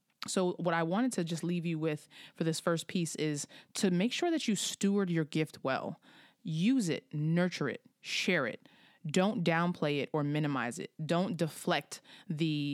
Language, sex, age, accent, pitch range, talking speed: English, female, 30-49, American, 155-185 Hz, 180 wpm